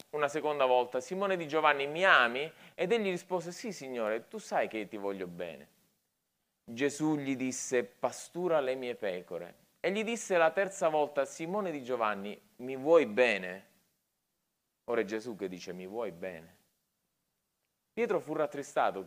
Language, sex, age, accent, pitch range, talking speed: Italian, male, 30-49, native, 110-155 Hz, 155 wpm